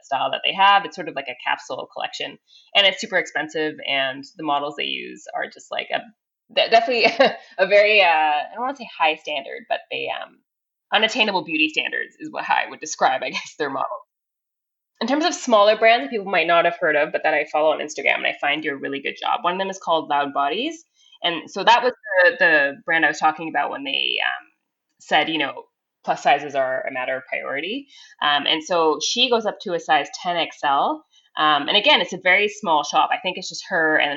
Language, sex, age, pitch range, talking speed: English, female, 20-39, 155-250 Hz, 225 wpm